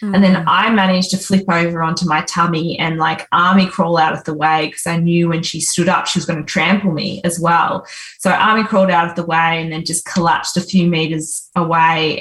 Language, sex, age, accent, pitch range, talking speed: English, female, 20-39, Australian, 160-185 Hz, 235 wpm